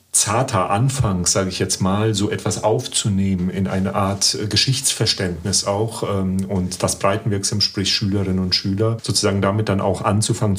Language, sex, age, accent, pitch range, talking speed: German, male, 40-59, German, 100-125 Hz, 145 wpm